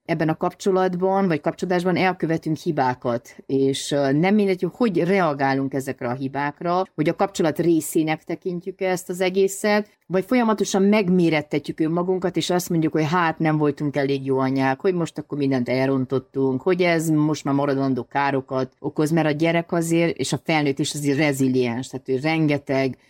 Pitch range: 140-175 Hz